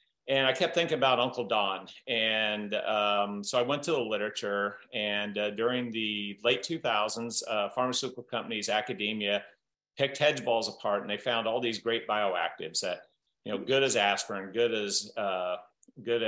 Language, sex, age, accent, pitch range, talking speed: English, male, 40-59, American, 105-125 Hz, 165 wpm